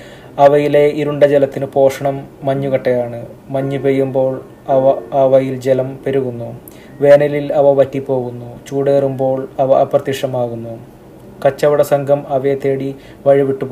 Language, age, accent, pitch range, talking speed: Malayalam, 20-39, native, 130-140 Hz, 95 wpm